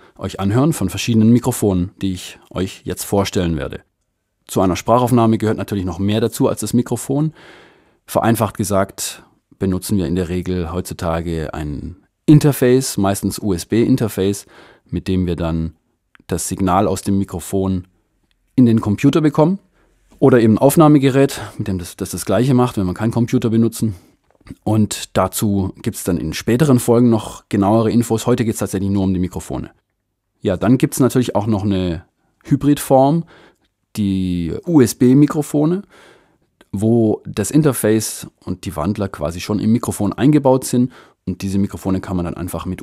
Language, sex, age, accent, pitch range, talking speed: German, male, 30-49, German, 95-120 Hz, 160 wpm